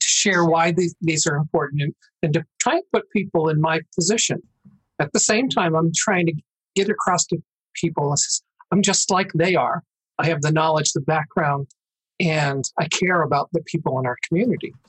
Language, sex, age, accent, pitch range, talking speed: English, male, 50-69, American, 145-175 Hz, 195 wpm